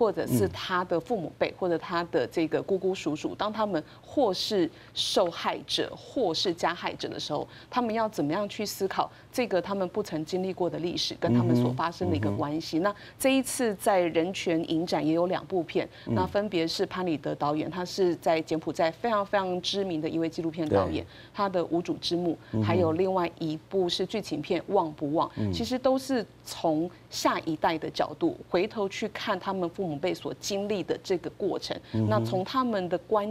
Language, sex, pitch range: Chinese, female, 160-195 Hz